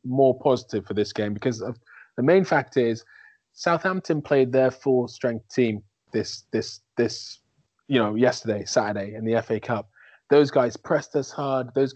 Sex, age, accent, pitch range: male, 20-39, British, 115-135 Hz